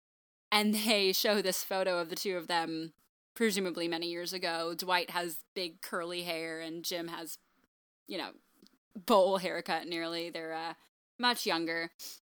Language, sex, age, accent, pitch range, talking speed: English, female, 10-29, American, 170-220 Hz, 150 wpm